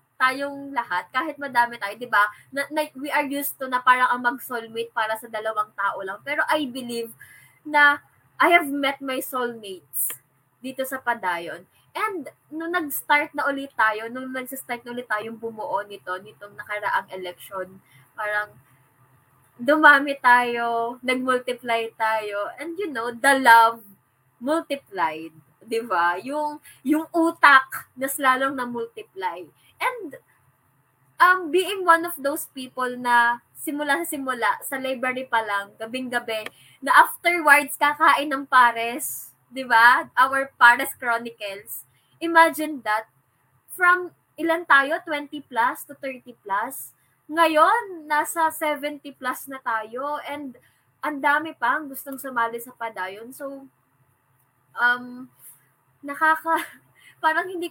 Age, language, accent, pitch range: 20-39, Filipino, native, 220-295 Hz